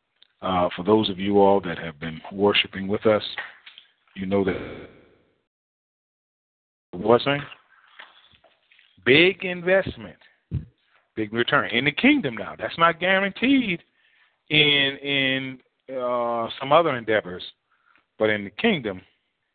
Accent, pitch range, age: American, 110-140 Hz, 40-59